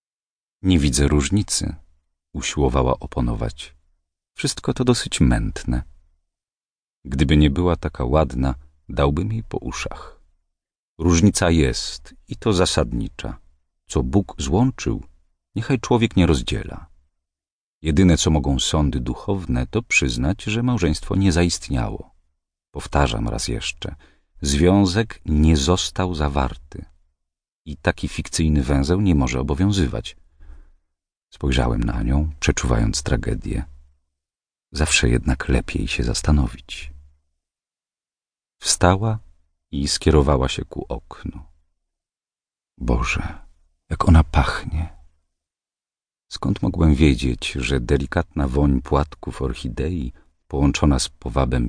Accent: native